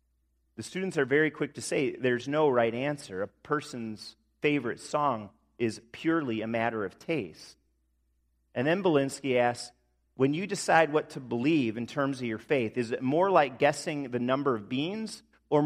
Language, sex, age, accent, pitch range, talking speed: English, male, 40-59, American, 100-150 Hz, 175 wpm